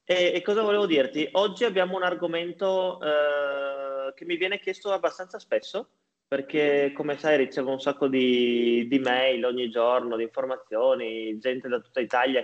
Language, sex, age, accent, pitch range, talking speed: Italian, male, 30-49, native, 125-170 Hz, 160 wpm